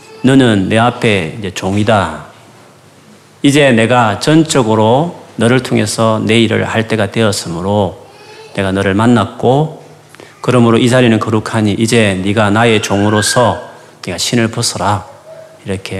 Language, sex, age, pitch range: Korean, male, 40-59, 100-135 Hz